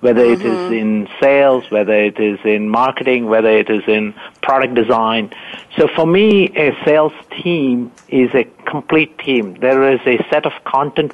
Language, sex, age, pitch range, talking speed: English, male, 60-79, 120-145 Hz, 170 wpm